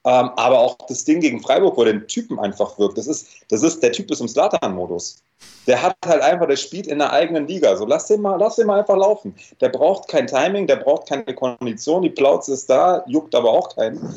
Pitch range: 130-170 Hz